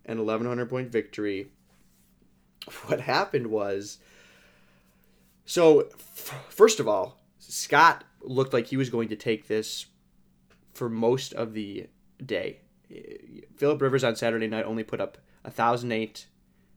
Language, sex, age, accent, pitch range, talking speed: English, male, 20-39, American, 110-130 Hz, 120 wpm